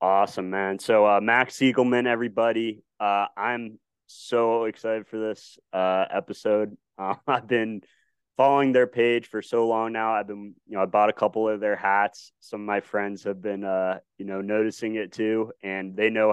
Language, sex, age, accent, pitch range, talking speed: English, male, 20-39, American, 100-115 Hz, 185 wpm